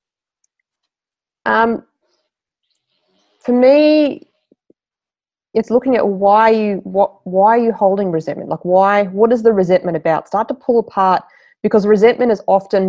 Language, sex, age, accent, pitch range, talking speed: English, female, 20-39, Australian, 175-210 Hz, 135 wpm